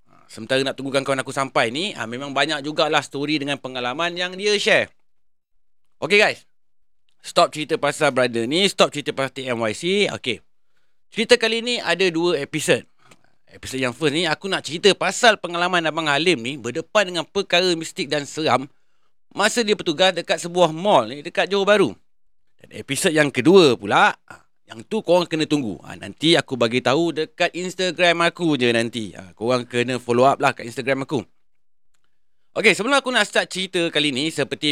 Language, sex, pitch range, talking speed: Malay, male, 135-180 Hz, 175 wpm